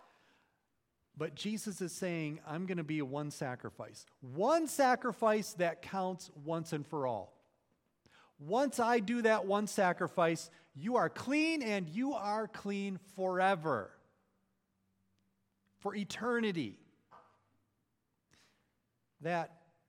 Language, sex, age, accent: English, male, 40-59, American